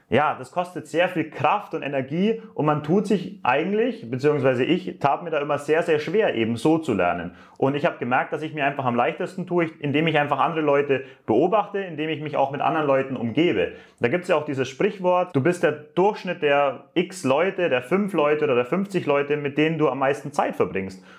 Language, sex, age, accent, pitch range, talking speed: English, male, 30-49, German, 135-175 Hz, 225 wpm